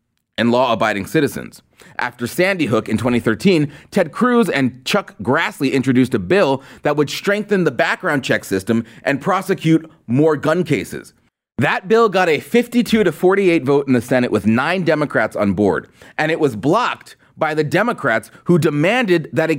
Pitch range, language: 135-190 Hz, English